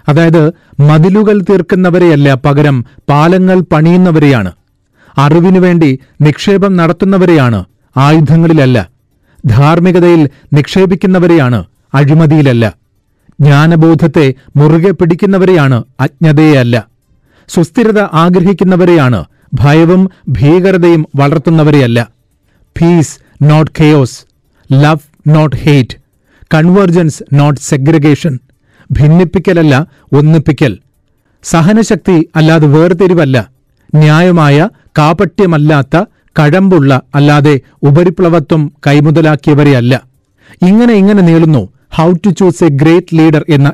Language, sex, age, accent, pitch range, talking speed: Malayalam, male, 40-59, native, 140-175 Hz, 70 wpm